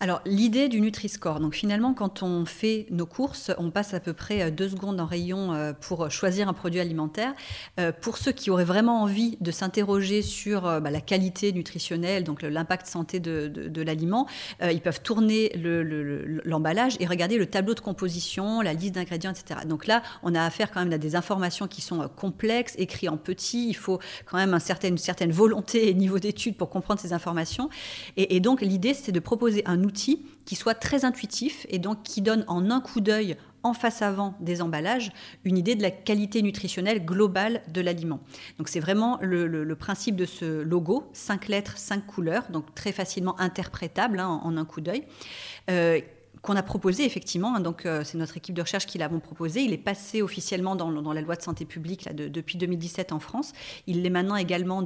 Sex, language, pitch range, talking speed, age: female, French, 170-210 Hz, 205 wpm, 30-49